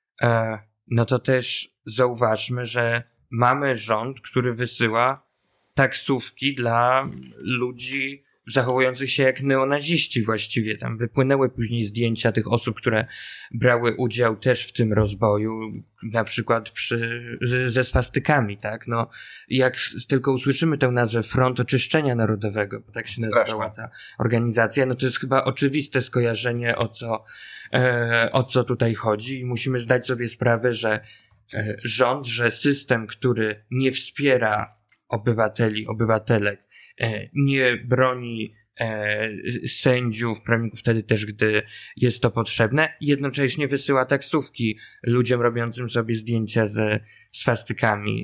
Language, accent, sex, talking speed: Polish, native, male, 120 wpm